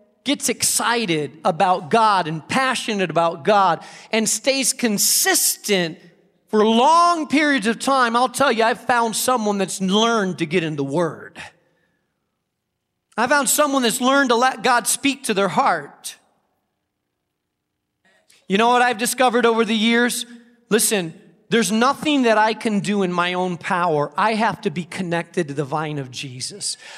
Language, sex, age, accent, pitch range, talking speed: English, male, 40-59, American, 195-260 Hz, 155 wpm